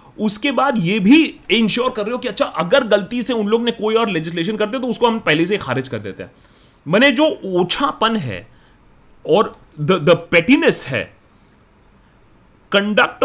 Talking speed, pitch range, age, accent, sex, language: 170 wpm, 155-240 Hz, 30-49, native, male, Hindi